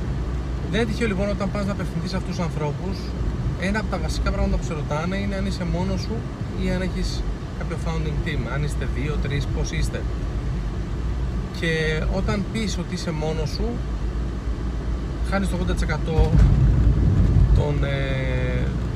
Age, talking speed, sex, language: 30-49, 145 wpm, male, Greek